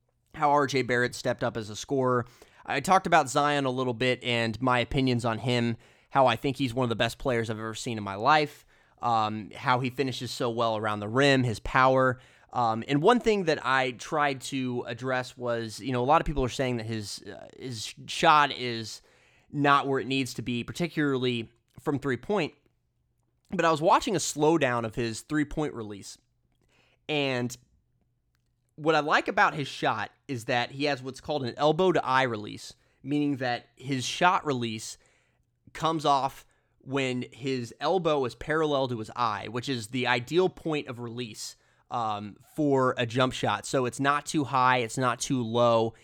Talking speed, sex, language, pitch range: 185 wpm, male, English, 120-140 Hz